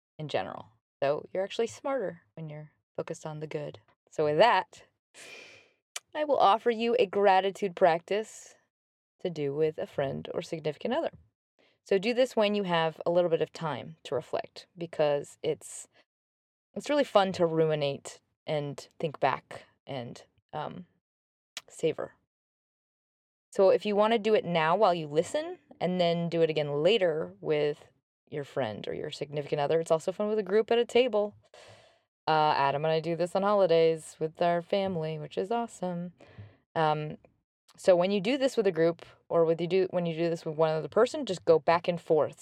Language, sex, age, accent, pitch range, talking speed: English, female, 20-39, American, 155-205 Hz, 185 wpm